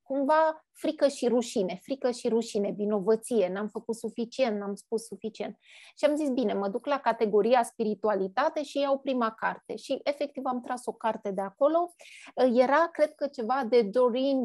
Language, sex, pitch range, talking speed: Romanian, female, 220-275 Hz, 170 wpm